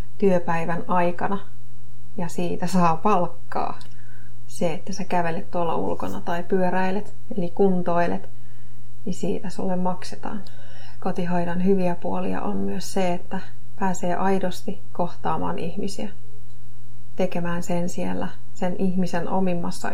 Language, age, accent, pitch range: Finnish, 30-49, native, 120-185 Hz